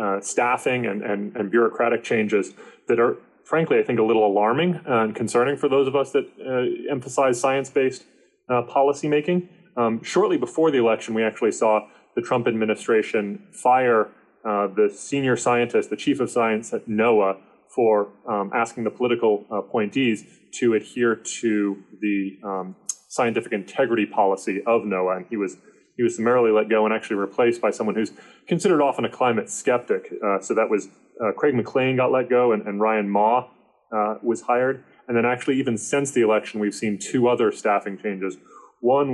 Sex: male